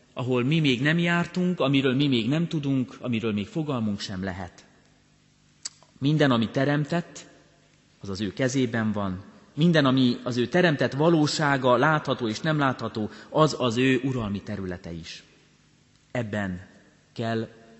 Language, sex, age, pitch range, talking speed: Hungarian, male, 30-49, 120-155 Hz, 140 wpm